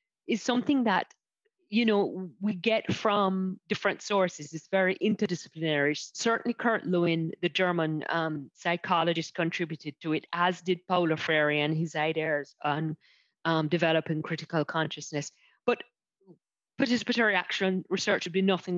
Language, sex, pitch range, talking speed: English, female, 165-215 Hz, 135 wpm